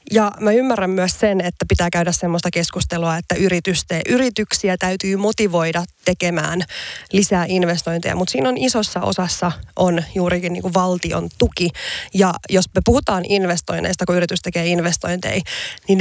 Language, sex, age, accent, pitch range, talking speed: Finnish, female, 20-39, native, 175-210 Hz, 145 wpm